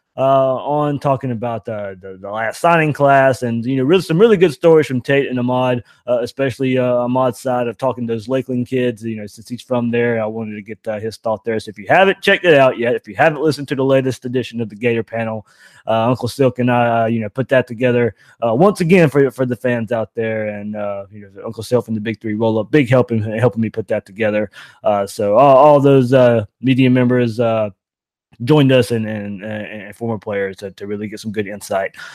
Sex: male